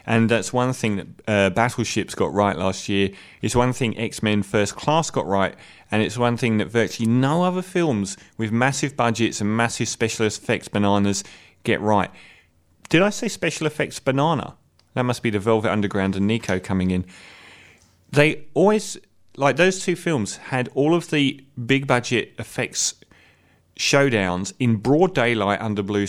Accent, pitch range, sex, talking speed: British, 110-150 Hz, male, 170 wpm